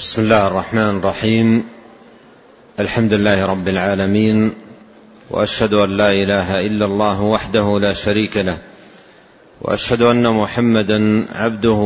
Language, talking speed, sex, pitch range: Arabic, 110 wpm, male, 105-115 Hz